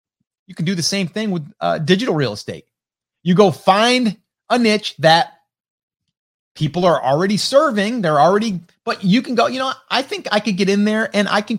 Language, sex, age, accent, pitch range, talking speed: English, male, 30-49, American, 150-220 Hz, 200 wpm